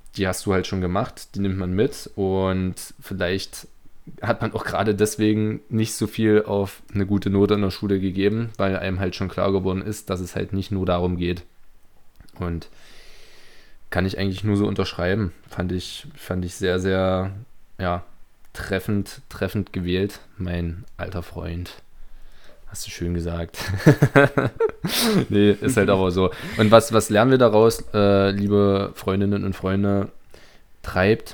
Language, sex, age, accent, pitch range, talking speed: German, male, 20-39, German, 90-105 Hz, 160 wpm